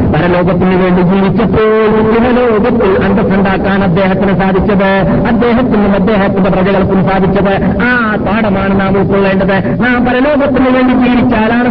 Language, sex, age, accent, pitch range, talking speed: Malayalam, male, 50-69, native, 190-240 Hz, 90 wpm